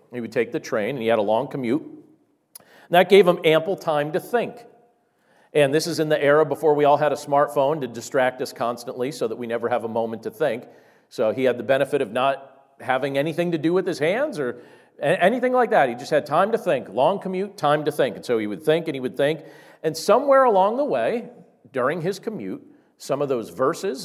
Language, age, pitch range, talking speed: English, 40-59, 125-185 Hz, 235 wpm